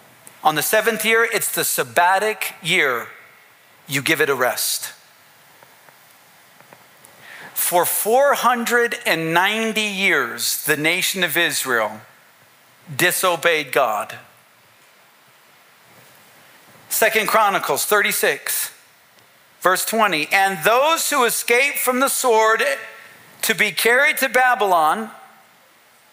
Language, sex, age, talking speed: English, male, 50-69, 90 wpm